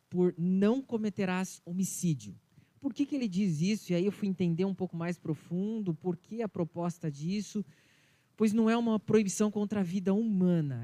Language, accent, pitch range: Portuguese, Brazilian, 165-205 Hz